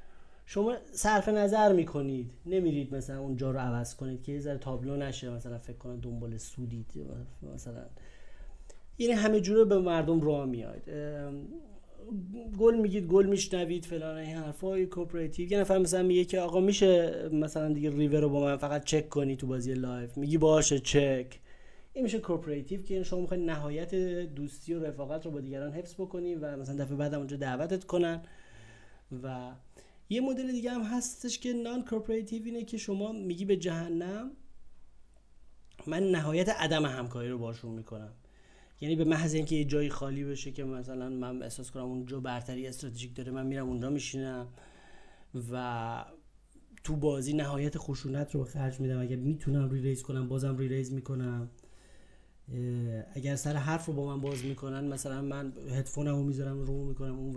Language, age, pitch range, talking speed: Persian, 30-49, 130-175 Hz, 165 wpm